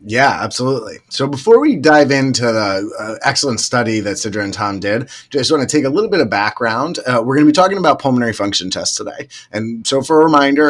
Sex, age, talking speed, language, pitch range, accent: male, 30-49, 230 wpm, English, 100-135 Hz, American